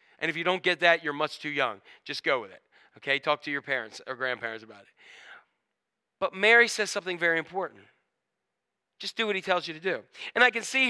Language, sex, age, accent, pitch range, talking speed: English, male, 40-59, American, 170-245 Hz, 225 wpm